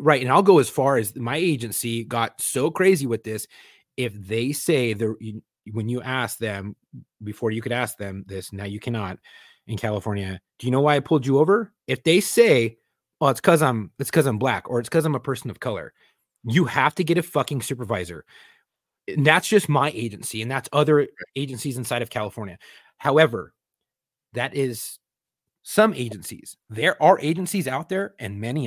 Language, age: English, 30-49